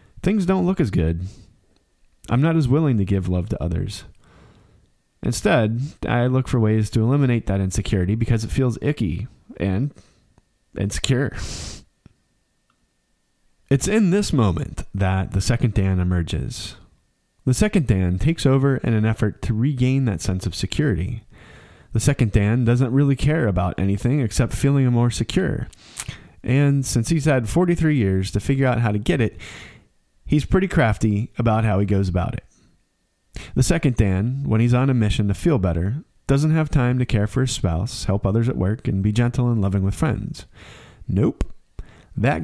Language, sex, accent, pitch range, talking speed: English, male, American, 100-135 Hz, 165 wpm